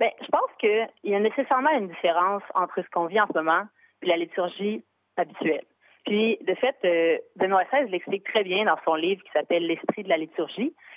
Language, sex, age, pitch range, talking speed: French, female, 30-49, 170-225 Hz, 200 wpm